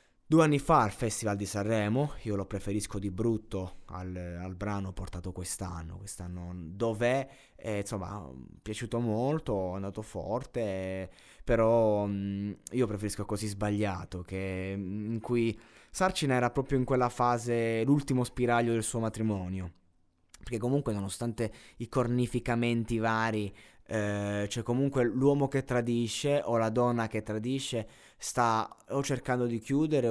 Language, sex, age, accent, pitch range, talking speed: Italian, male, 20-39, native, 100-120 Hz, 130 wpm